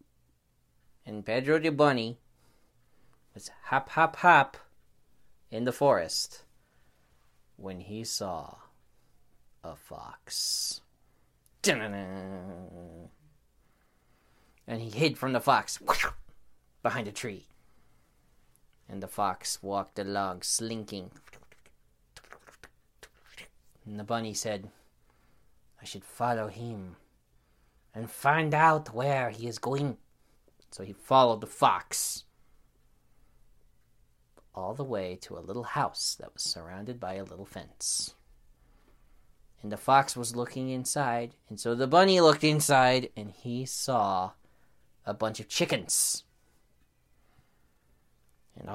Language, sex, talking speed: English, male, 105 wpm